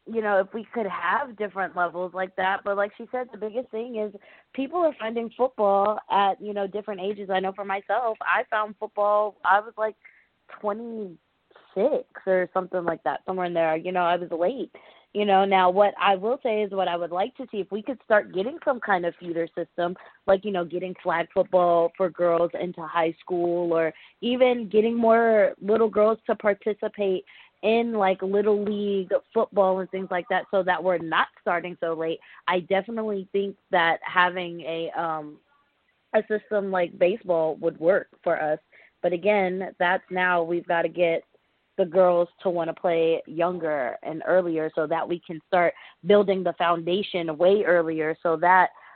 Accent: American